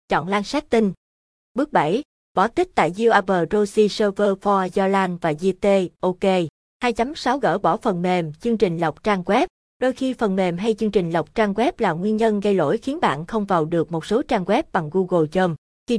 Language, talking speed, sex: Vietnamese, 205 wpm, female